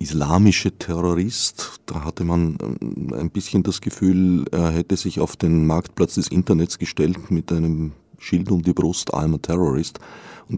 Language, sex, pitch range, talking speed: German, male, 80-95 Hz, 160 wpm